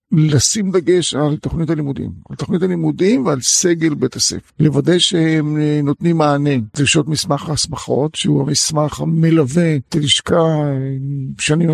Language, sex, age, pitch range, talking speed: Hebrew, male, 50-69, 140-170 Hz, 130 wpm